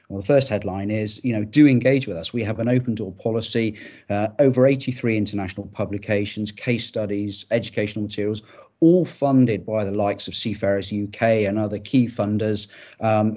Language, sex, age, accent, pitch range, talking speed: English, male, 40-59, British, 100-120 Hz, 175 wpm